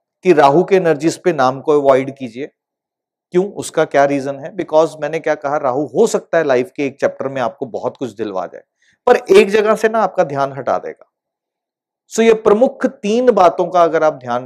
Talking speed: 210 wpm